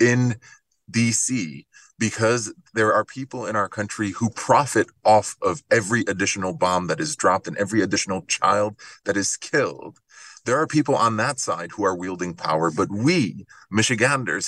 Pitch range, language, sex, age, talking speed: 105-130 Hz, English, male, 30-49, 160 wpm